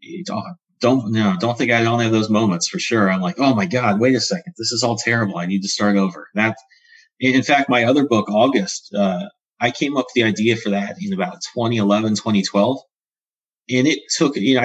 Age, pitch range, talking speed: 30-49, 100-130 Hz, 225 wpm